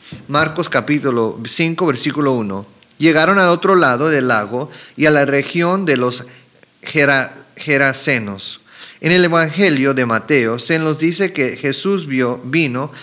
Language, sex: English, male